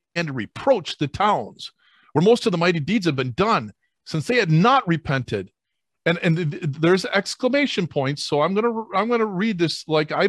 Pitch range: 145-225 Hz